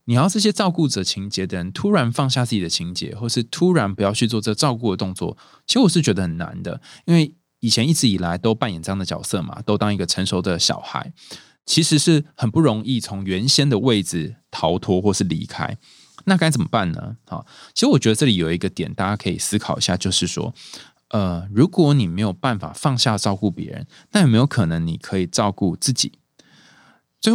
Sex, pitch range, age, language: male, 95-135 Hz, 20-39, Chinese